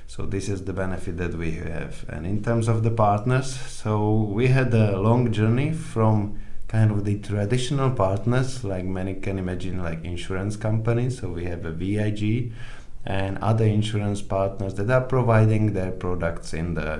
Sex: male